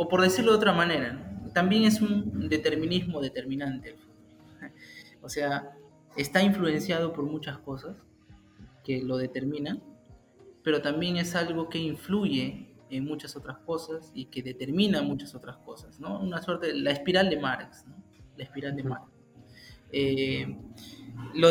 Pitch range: 135-160 Hz